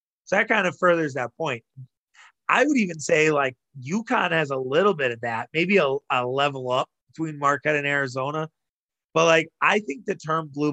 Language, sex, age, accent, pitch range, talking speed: English, male, 30-49, American, 130-155 Hz, 195 wpm